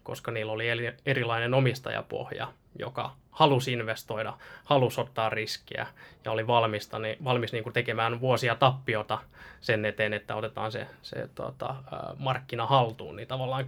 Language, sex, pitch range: Finnish, male, 115-135 Hz